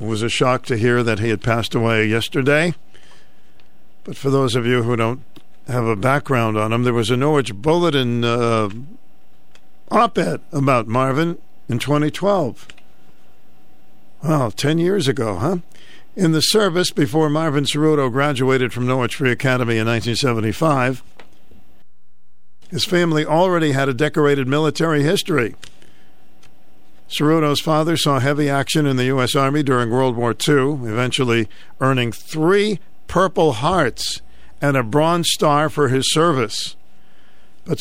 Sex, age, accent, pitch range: male, 50-69, American, 125-155 Hz